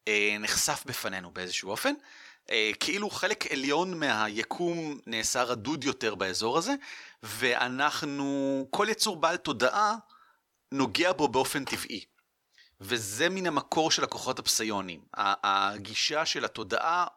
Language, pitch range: Hebrew, 115-190 Hz